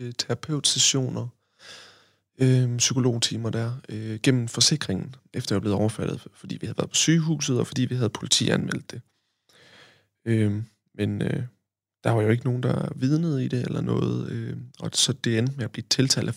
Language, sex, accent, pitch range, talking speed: Danish, male, native, 110-130 Hz, 175 wpm